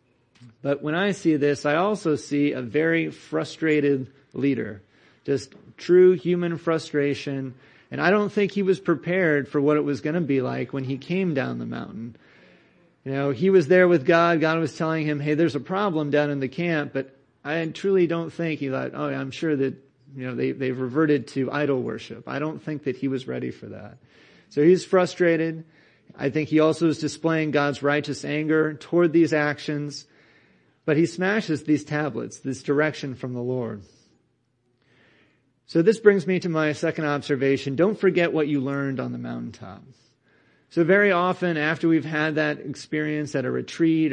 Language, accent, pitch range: English, American, 135-160 Hz